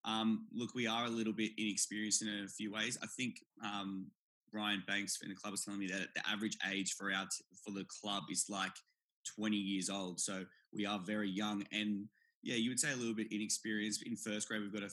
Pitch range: 100-110 Hz